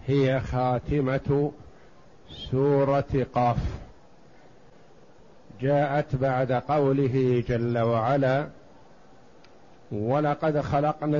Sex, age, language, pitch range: male, 50-69, Arabic, 130-145 Hz